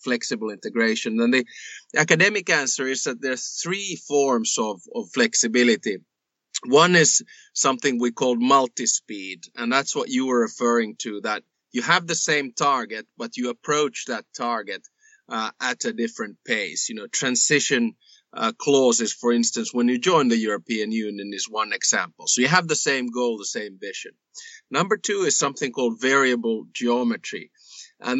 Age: 30-49